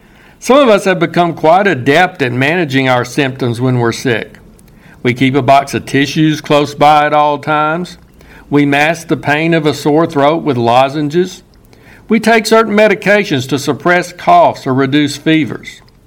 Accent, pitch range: American, 140-185 Hz